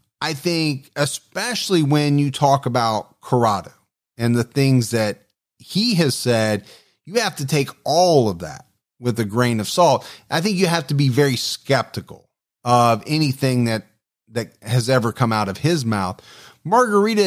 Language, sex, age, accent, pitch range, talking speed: English, male, 30-49, American, 120-155 Hz, 165 wpm